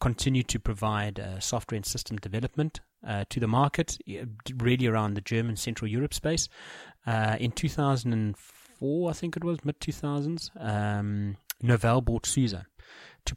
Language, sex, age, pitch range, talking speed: English, male, 30-49, 110-140 Hz, 145 wpm